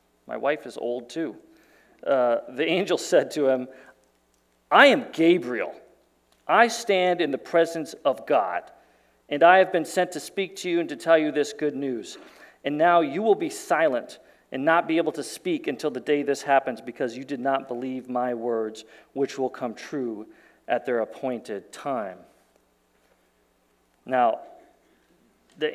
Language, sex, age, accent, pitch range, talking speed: English, male, 40-59, American, 125-195 Hz, 165 wpm